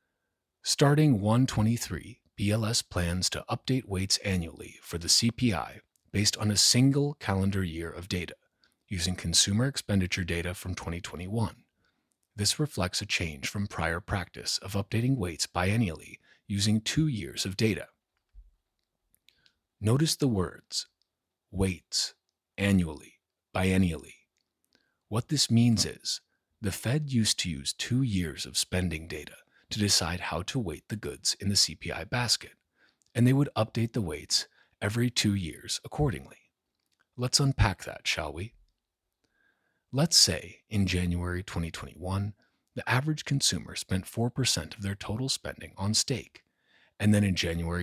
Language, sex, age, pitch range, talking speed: English, male, 30-49, 90-120 Hz, 135 wpm